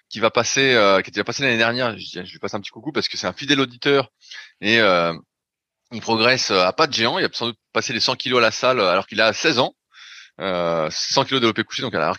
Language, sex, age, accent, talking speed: French, male, 30-49, French, 250 wpm